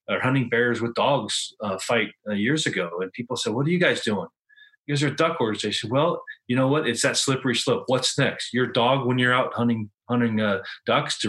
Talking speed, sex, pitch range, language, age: 245 wpm, male, 110-135 Hz, English, 30-49